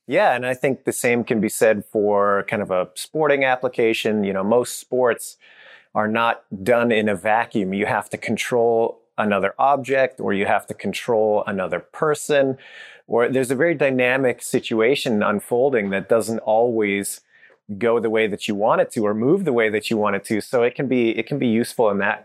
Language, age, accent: English, 30-49, American